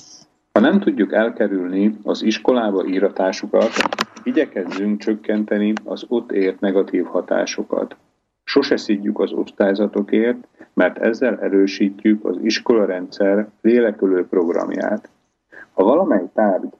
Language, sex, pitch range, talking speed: Slovak, male, 100-115 Hz, 100 wpm